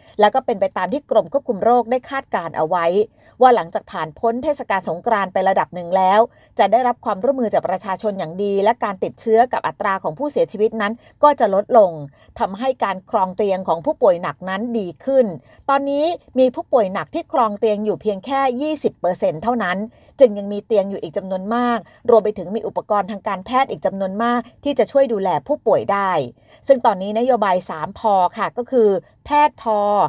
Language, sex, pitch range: Thai, female, 190-245 Hz